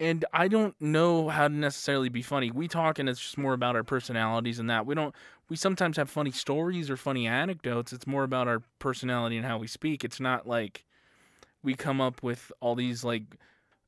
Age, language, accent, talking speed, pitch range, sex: 20-39, English, American, 210 wpm, 120-150 Hz, male